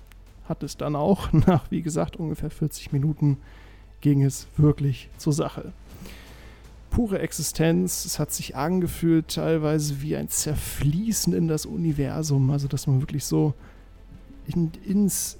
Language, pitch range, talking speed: German, 135-165 Hz, 135 wpm